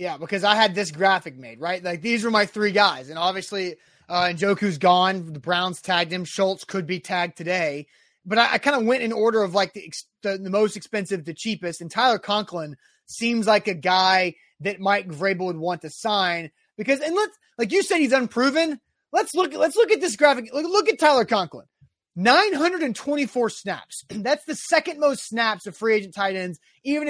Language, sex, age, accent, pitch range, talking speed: English, male, 30-49, American, 180-245 Hz, 215 wpm